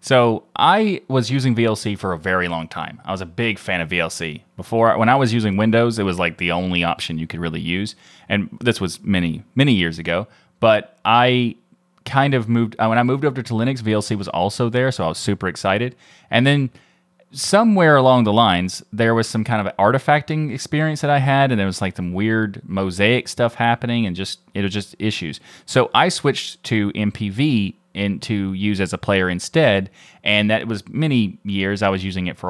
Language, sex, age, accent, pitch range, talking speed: English, male, 30-49, American, 95-120 Hz, 210 wpm